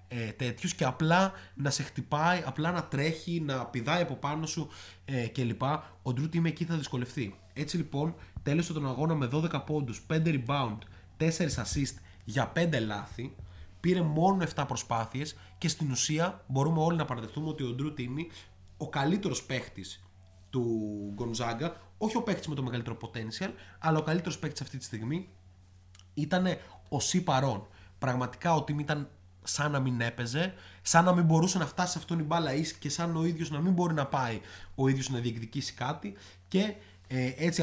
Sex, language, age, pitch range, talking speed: male, Greek, 30-49, 115-160 Hz, 170 wpm